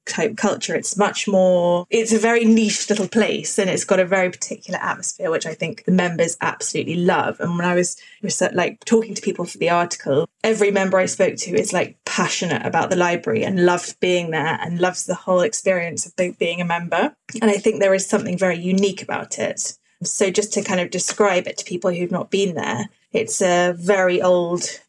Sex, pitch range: female, 175-200 Hz